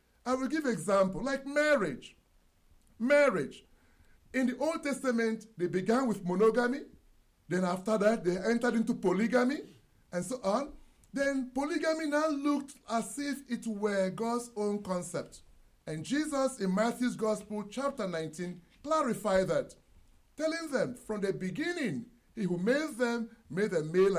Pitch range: 185-255 Hz